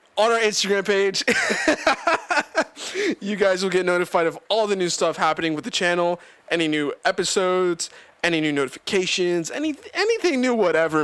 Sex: male